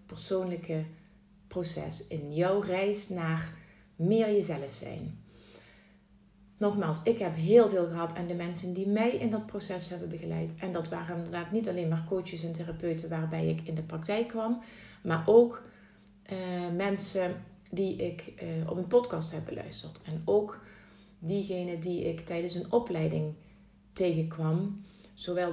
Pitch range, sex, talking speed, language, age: 165-200 Hz, female, 150 wpm, Dutch, 30-49